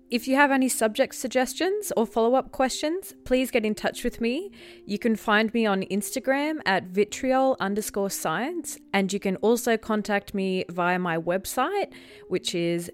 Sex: female